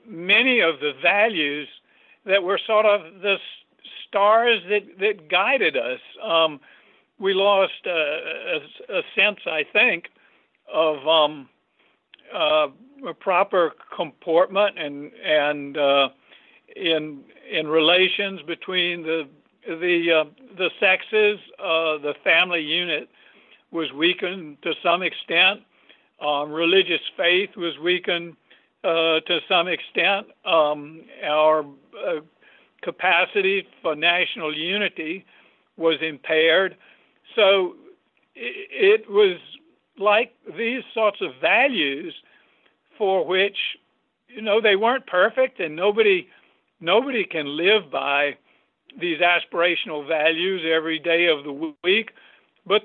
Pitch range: 160-220 Hz